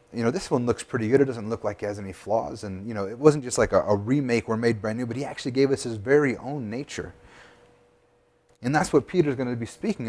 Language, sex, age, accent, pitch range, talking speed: English, male, 30-49, American, 110-145 Hz, 275 wpm